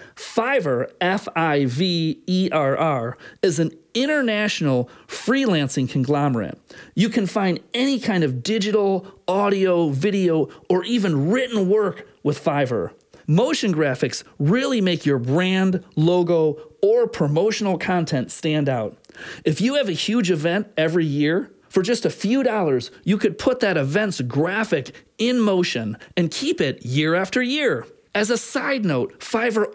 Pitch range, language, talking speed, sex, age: 145-215 Hz, English, 135 wpm, male, 40-59